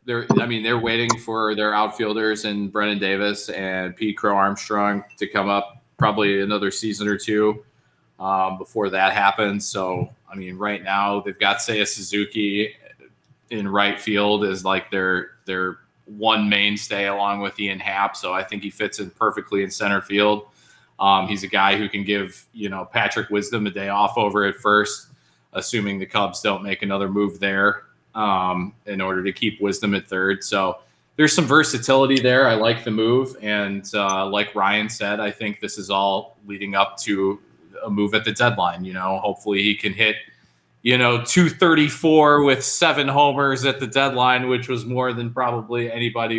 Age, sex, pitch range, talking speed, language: 20-39, male, 100-115 Hz, 180 wpm, English